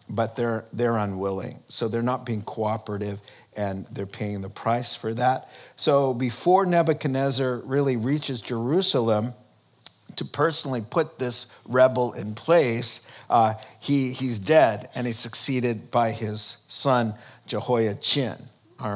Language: English